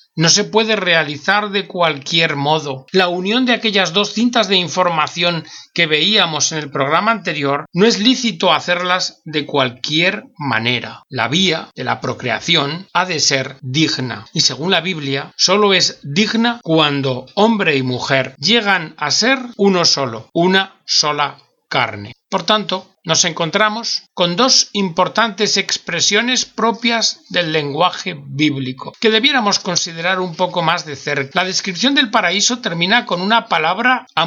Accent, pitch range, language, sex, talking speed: Spanish, 155-210 Hz, Spanish, male, 150 wpm